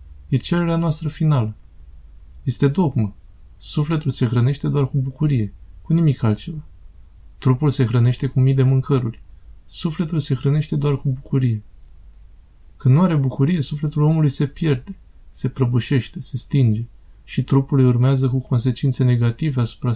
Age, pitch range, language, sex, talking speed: 20-39, 110-140 Hz, Romanian, male, 140 wpm